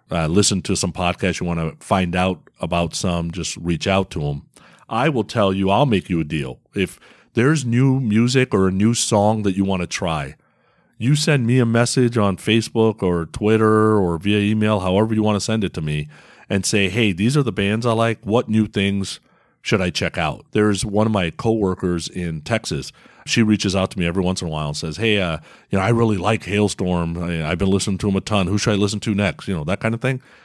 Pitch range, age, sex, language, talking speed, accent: 90-110 Hz, 40-59, male, English, 240 wpm, American